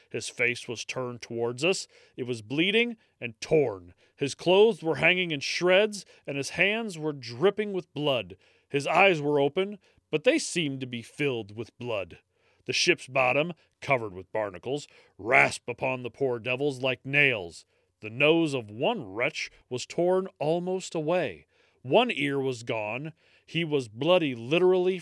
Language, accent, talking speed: English, American, 160 wpm